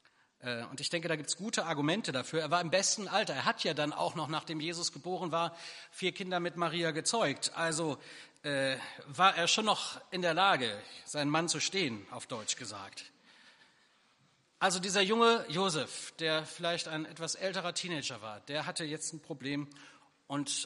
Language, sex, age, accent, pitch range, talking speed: German, male, 40-59, German, 145-175 Hz, 180 wpm